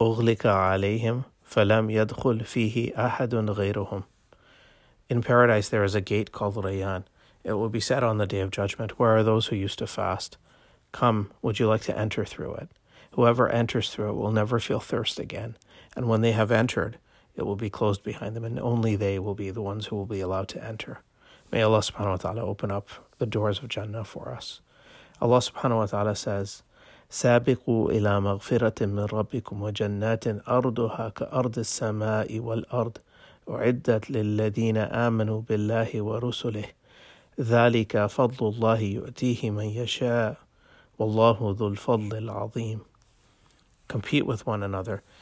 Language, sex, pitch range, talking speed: English, male, 105-120 Hz, 130 wpm